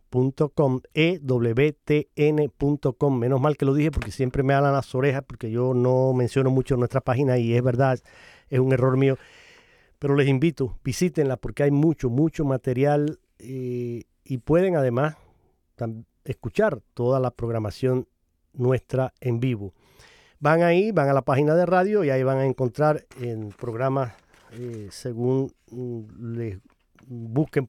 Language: Spanish